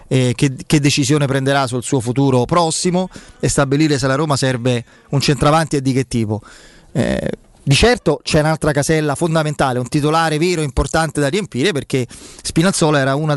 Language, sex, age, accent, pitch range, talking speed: Italian, male, 30-49, native, 135-160 Hz, 175 wpm